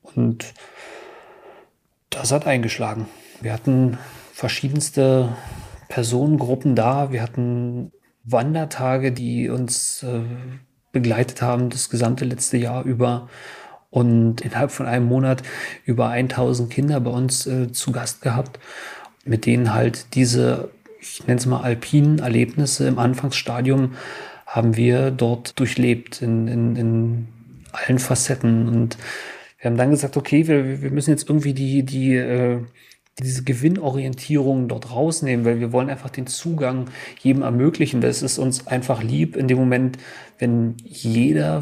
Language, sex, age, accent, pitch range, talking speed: German, male, 40-59, German, 120-135 Hz, 135 wpm